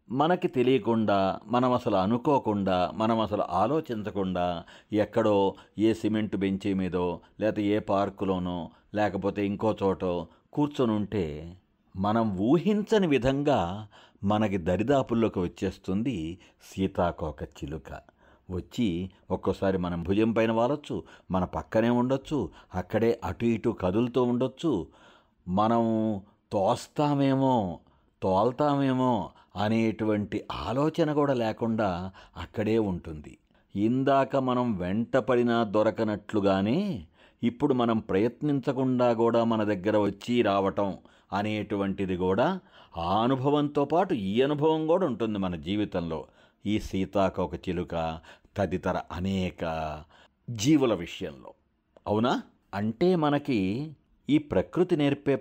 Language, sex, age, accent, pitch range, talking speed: Telugu, male, 60-79, native, 95-125 Hz, 95 wpm